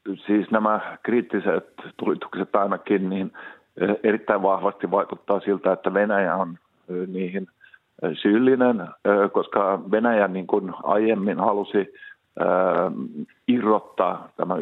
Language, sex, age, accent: Finnish, male, 50-69, native